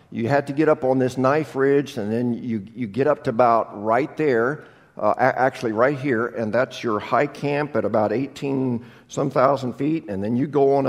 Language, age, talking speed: English, 50-69, 215 wpm